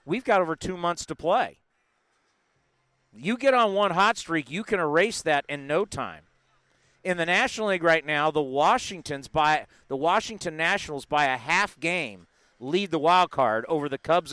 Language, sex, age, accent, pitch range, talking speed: English, male, 50-69, American, 150-200 Hz, 180 wpm